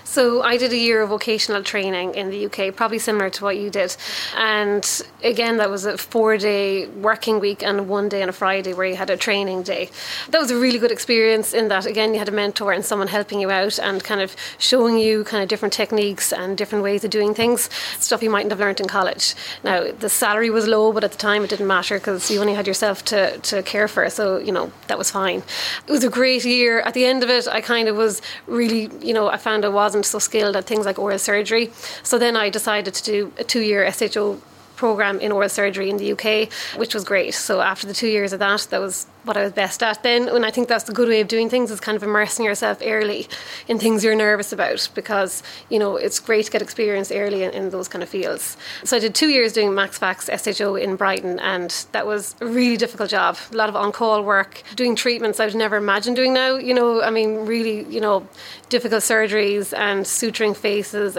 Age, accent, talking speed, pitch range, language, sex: 20-39, Irish, 240 wpm, 200-225 Hz, English, female